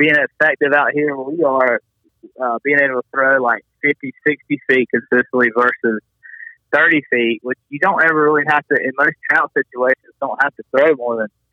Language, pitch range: English, 120-150 Hz